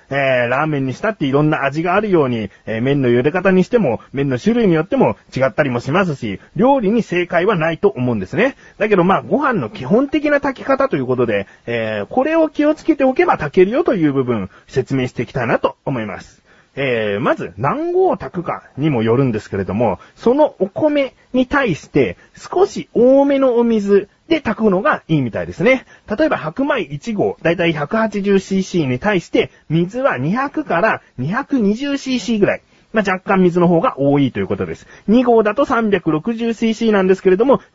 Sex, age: male, 40-59